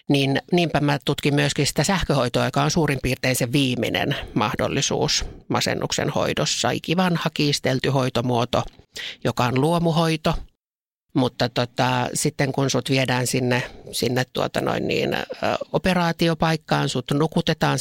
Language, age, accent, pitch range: Finnish, 50-69, native, 125-155 Hz